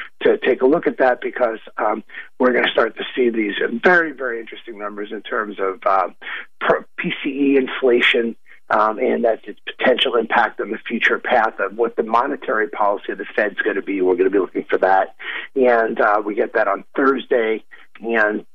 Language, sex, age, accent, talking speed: English, male, 50-69, American, 195 wpm